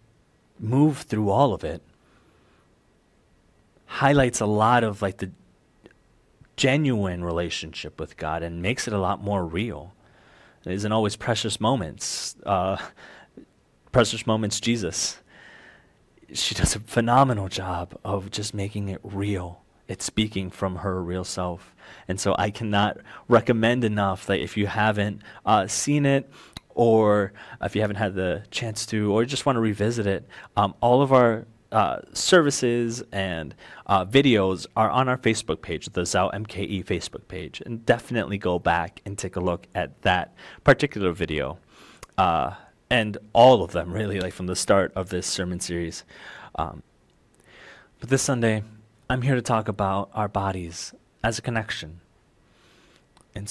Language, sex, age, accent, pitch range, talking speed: English, male, 30-49, American, 95-115 Hz, 150 wpm